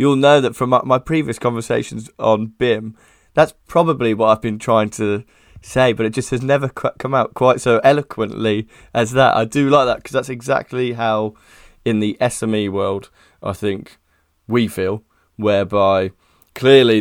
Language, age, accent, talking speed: English, 20-39, British, 170 wpm